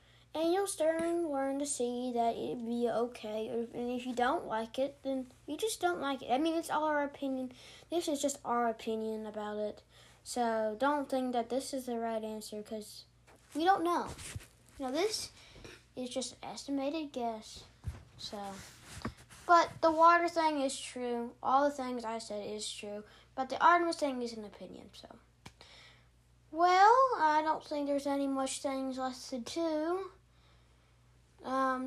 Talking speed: 170 wpm